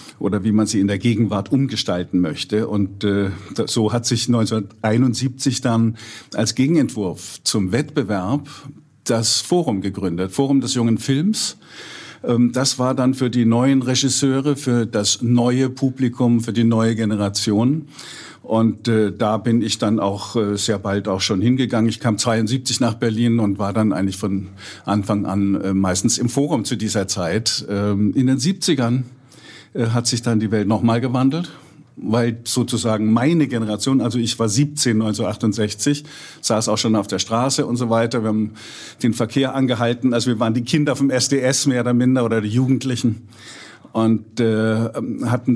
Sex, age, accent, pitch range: male, 50-69, German, 105-125 Hz